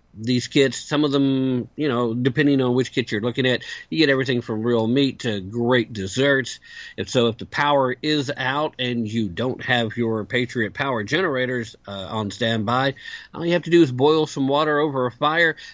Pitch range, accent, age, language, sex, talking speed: 115-150 Hz, American, 50-69, English, male, 200 wpm